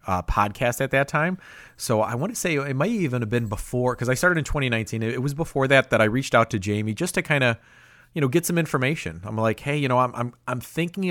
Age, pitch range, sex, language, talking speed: 30-49, 115-150 Hz, male, English, 265 wpm